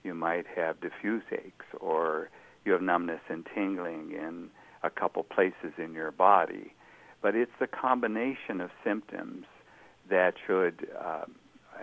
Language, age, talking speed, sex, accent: English, 60-79, 135 wpm, male, American